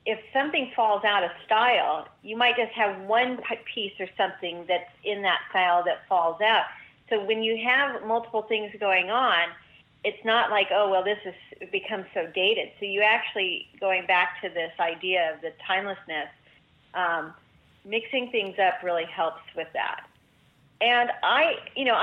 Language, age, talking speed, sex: English, 40-59, 170 wpm, female